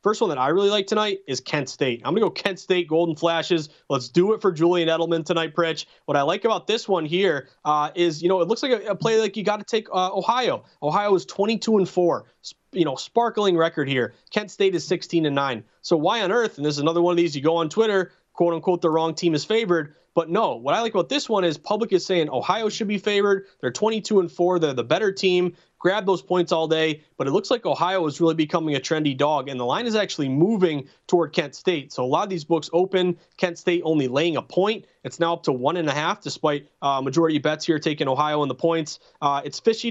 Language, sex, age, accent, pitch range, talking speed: English, male, 30-49, American, 155-190 Hz, 255 wpm